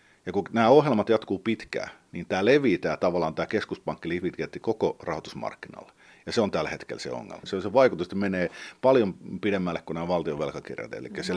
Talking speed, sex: 165 wpm, male